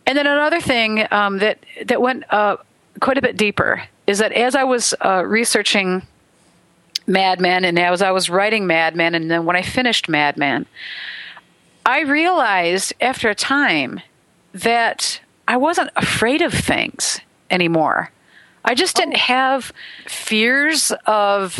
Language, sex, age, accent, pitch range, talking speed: English, female, 50-69, American, 190-245 Hz, 150 wpm